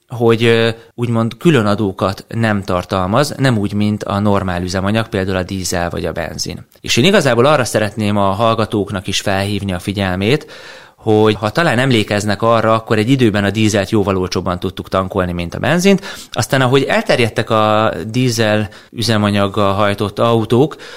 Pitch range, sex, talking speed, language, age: 100-115 Hz, male, 155 wpm, Hungarian, 30-49